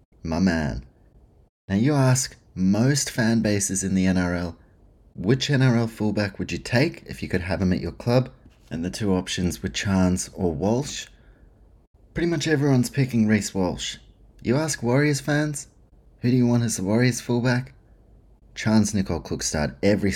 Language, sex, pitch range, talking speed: English, male, 90-120 Hz, 165 wpm